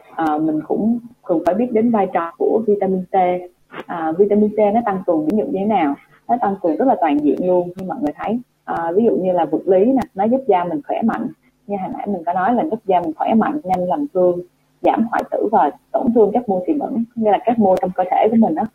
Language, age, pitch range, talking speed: Vietnamese, 20-39, 175-240 Hz, 270 wpm